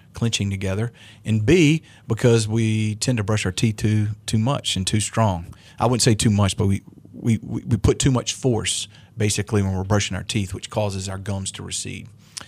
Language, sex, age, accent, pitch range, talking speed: English, male, 40-59, American, 100-115 Hz, 200 wpm